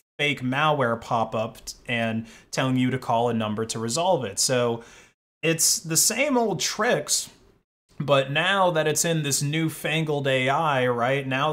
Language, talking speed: English, 155 wpm